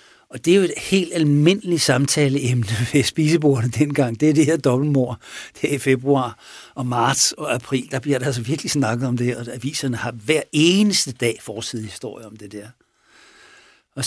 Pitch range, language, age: 120-150 Hz, Danish, 60-79